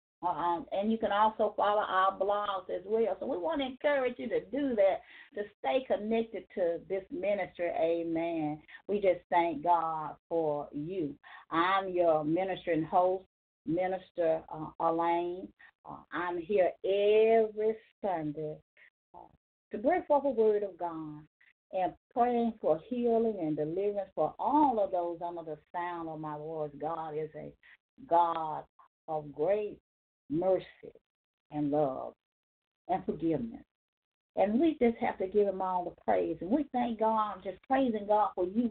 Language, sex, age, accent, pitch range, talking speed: English, female, 40-59, American, 170-215 Hz, 150 wpm